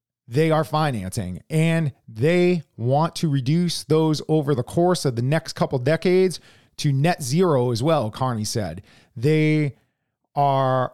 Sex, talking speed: male, 150 wpm